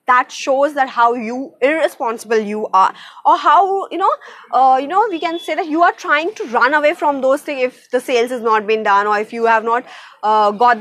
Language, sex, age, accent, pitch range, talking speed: English, female, 20-39, Indian, 245-345 Hz, 235 wpm